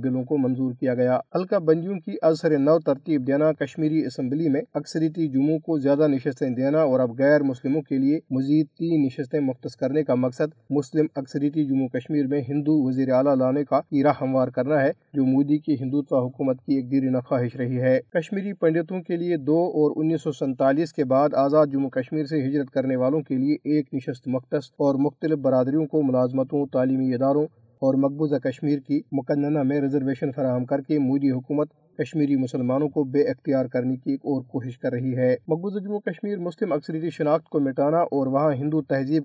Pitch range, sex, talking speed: 135-155 Hz, male, 195 wpm